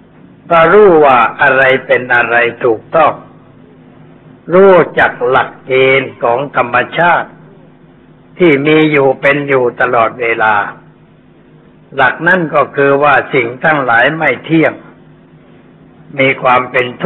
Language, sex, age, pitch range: Thai, male, 60-79, 115-145 Hz